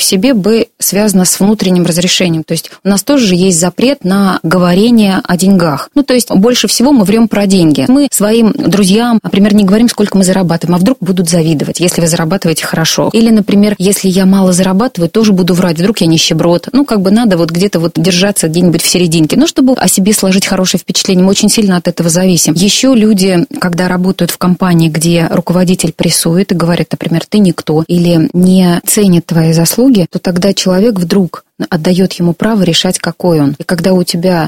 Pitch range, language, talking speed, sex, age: 170-205 Hz, Russian, 195 wpm, female, 20-39